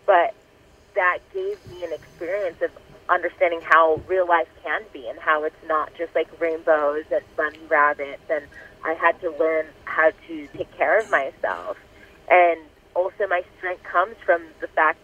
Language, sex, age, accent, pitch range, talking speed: English, female, 30-49, American, 160-185 Hz, 170 wpm